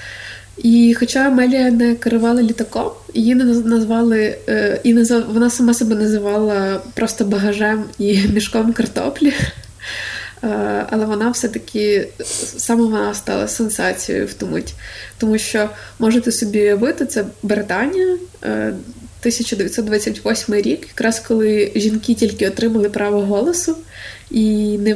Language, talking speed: Ukrainian, 110 wpm